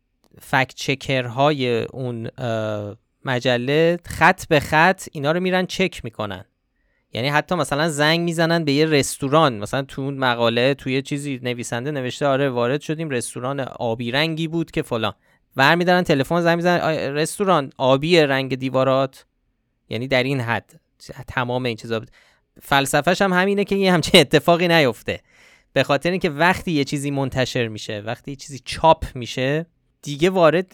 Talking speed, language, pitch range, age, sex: 150 wpm, Persian, 125-160 Hz, 20-39, male